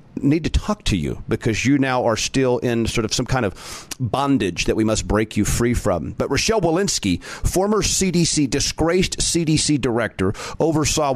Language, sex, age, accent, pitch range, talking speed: English, male, 40-59, American, 115-155 Hz, 180 wpm